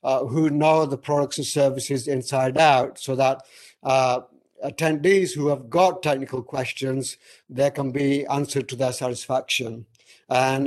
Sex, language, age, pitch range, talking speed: male, English, 60-79, 130-155 Hz, 145 wpm